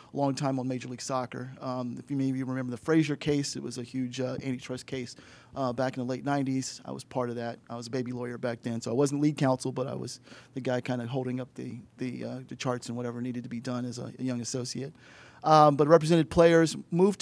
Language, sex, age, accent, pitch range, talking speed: English, male, 40-59, American, 125-145 Hz, 260 wpm